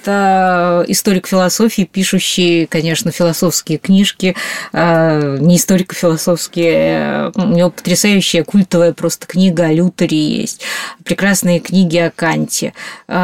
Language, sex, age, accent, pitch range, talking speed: Russian, female, 20-39, native, 170-195 Hz, 100 wpm